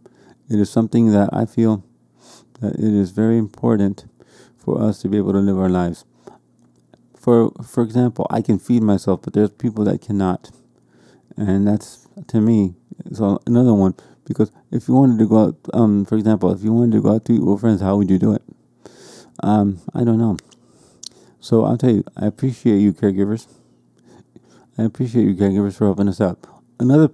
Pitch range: 100-115 Hz